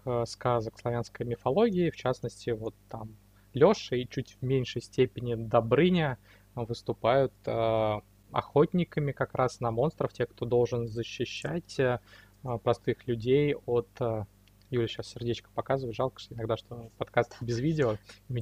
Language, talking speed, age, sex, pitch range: Russian, 135 wpm, 20-39, male, 115-135 Hz